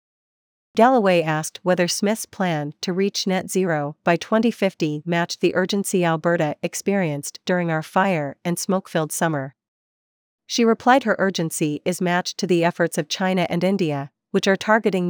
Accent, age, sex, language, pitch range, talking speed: American, 40-59, female, English, 165-200 Hz, 145 wpm